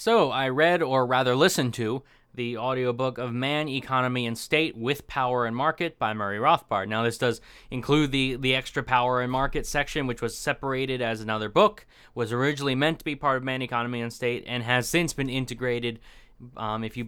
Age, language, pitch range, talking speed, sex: 20-39, English, 120-150 Hz, 200 wpm, male